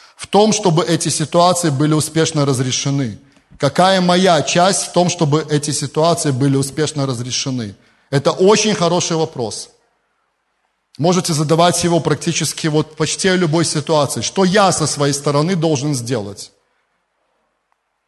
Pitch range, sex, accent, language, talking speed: 140-185 Hz, male, native, Russian, 130 wpm